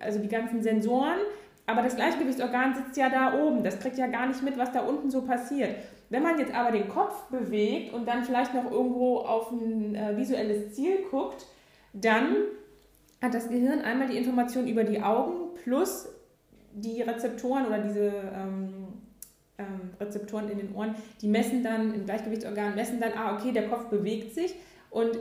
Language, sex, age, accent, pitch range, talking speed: German, female, 20-39, German, 215-255 Hz, 175 wpm